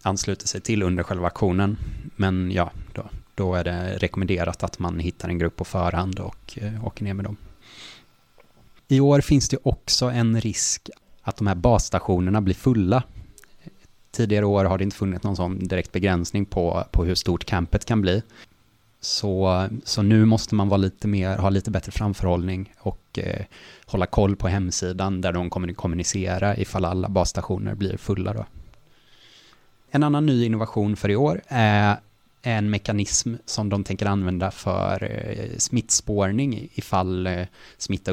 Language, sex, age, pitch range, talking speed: Swedish, male, 20-39, 95-110 Hz, 160 wpm